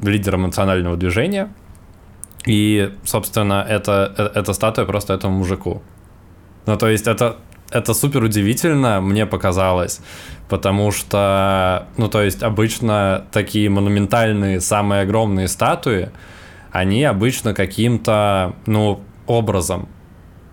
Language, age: Russian, 20-39